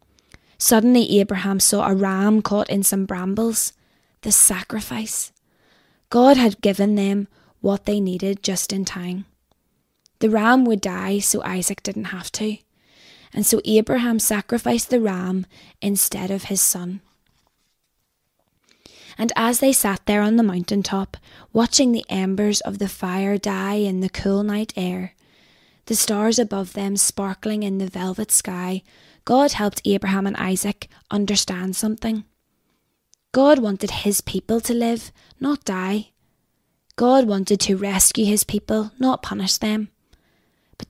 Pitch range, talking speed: 195-220 Hz, 140 wpm